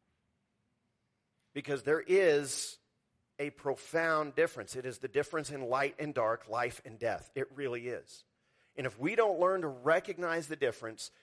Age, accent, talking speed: 50-69, American, 155 wpm